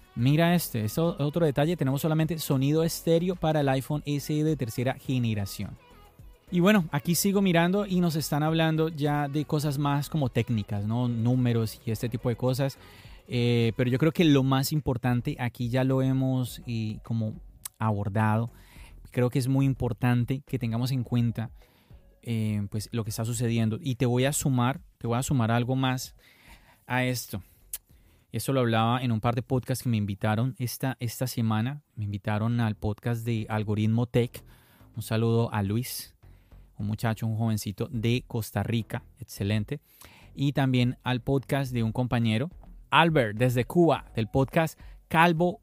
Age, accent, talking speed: 30-49, Colombian, 165 wpm